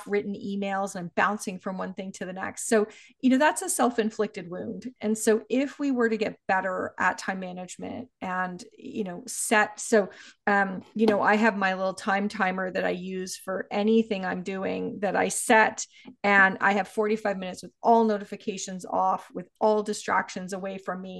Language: English